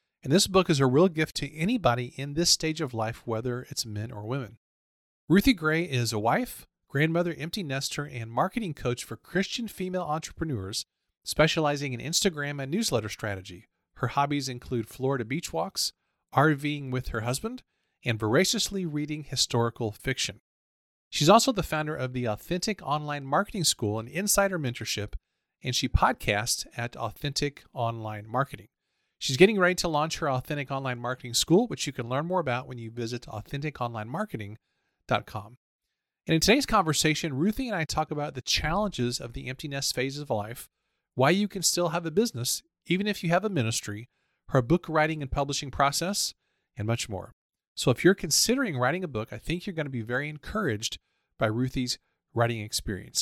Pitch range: 120-165 Hz